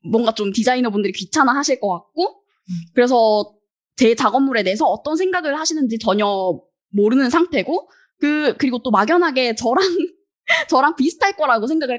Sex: female